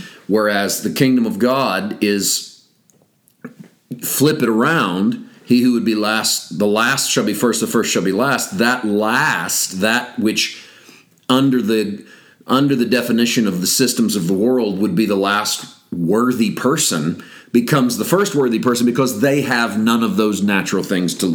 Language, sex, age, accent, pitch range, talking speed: English, male, 40-59, American, 105-135 Hz, 165 wpm